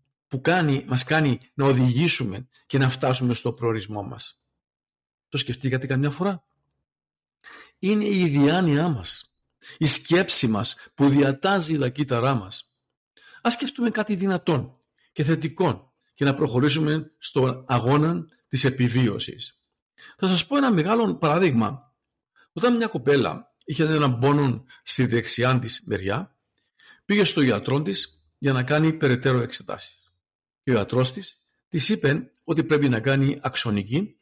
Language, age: Greek, 50-69